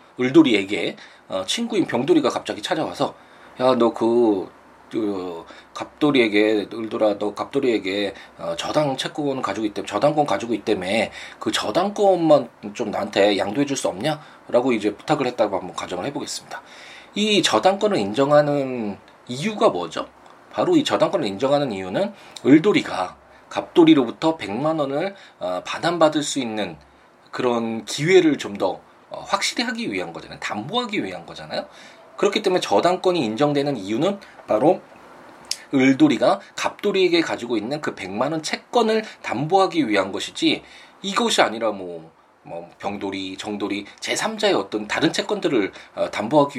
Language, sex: Korean, male